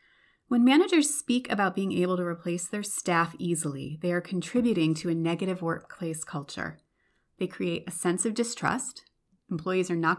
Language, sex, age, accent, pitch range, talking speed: English, female, 30-49, American, 170-230 Hz, 165 wpm